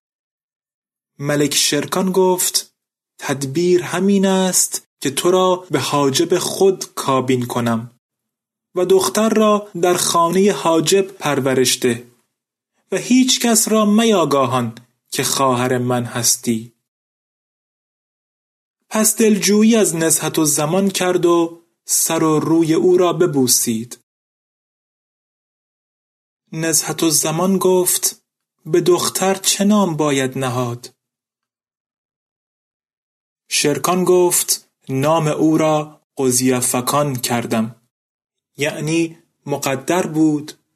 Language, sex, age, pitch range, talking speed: Persian, male, 30-49, 135-185 Hz, 95 wpm